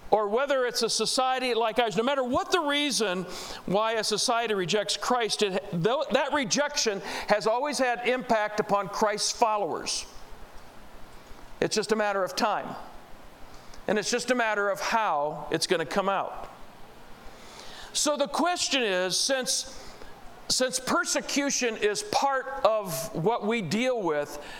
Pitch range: 185-265 Hz